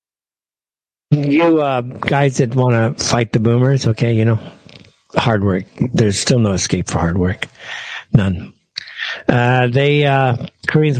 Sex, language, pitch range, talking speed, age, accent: male, English, 115-165 Hz, 140 wpm, 60-79, American